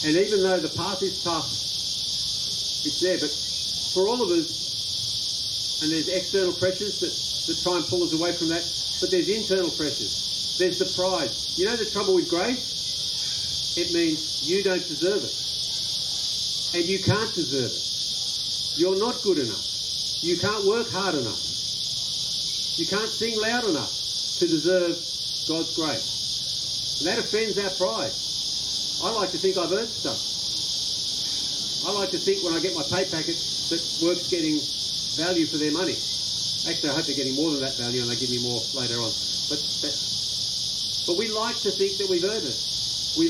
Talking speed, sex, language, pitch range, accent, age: 175 wpm, male, English, 155-205 Hz, Australian, 50-69